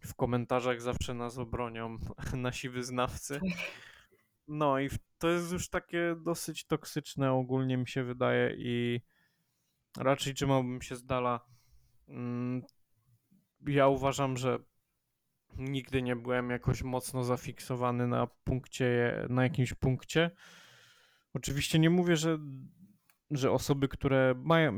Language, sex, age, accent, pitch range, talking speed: Polish, male, 20-39, native, 120-135 Hz, 110 wpm